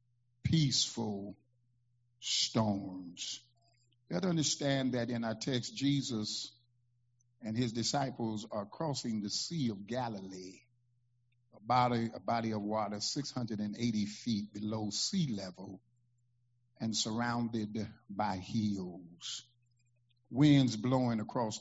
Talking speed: 110 wpm